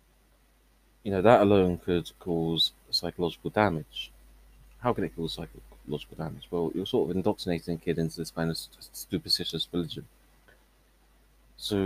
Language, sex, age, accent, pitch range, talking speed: English, male, 30-49, British, 80-100 Hz, 135 wpm